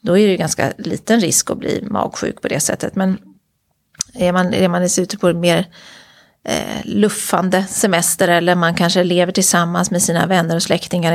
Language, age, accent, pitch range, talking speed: Swedish, 30-49, native, 175-215 Hz, 190 wpm